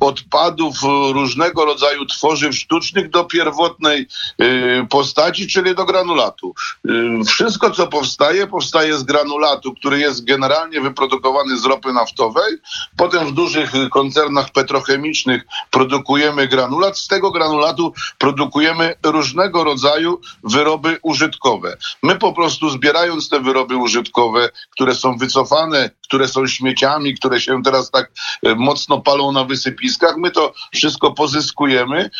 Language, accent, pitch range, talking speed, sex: Polish, native, 135-165 Hz, 120 wpm, male